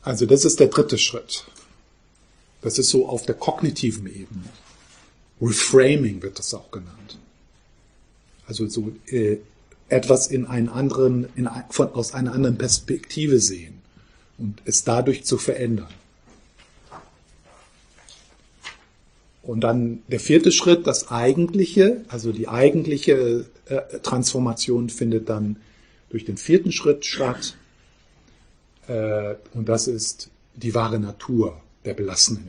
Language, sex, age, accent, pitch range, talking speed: German, male, 50-69, German, 110-135 Hz, 120 wpm